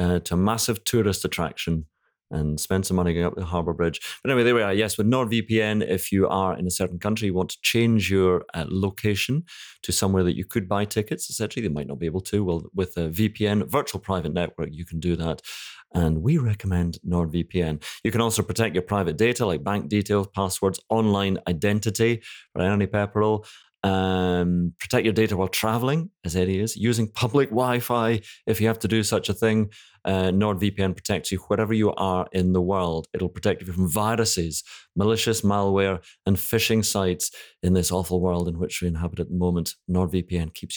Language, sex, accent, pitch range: English, male, British, 90-110 Hz